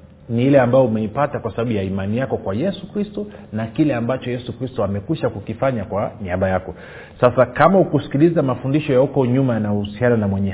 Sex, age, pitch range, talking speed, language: male, 40-59, 100-145 Hz, 170 wpm, Swahili